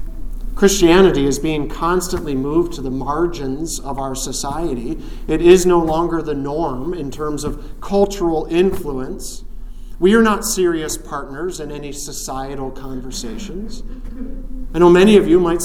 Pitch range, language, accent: 150-195 Hz, English, American